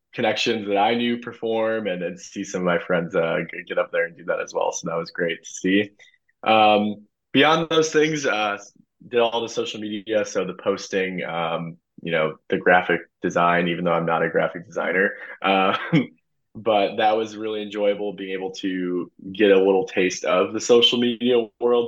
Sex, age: male, 20-39